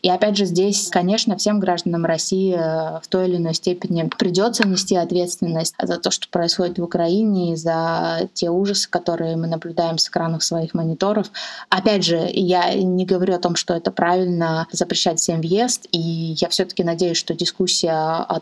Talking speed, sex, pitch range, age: 175 wpm, female, 165-190 Hz, 20-39